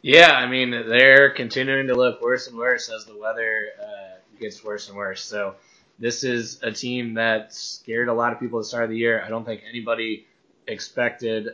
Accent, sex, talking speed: American, male, 210 wpm